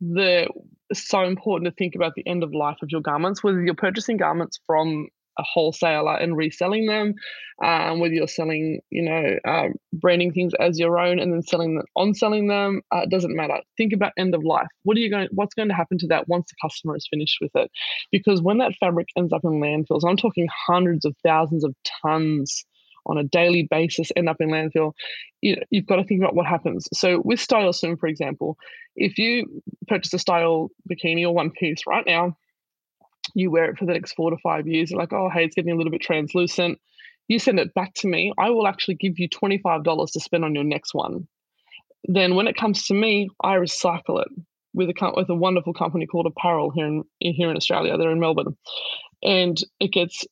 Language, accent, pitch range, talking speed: English, Australian, 165-195 Hz, 220 wpm